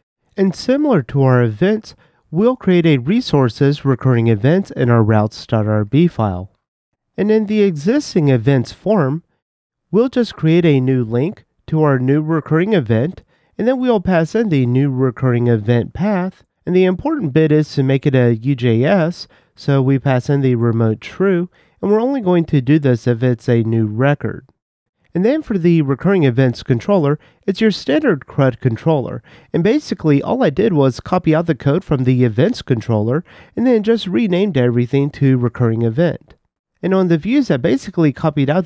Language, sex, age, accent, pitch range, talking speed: English, male, 30-49, American, 125-180 Hz, 175 wpm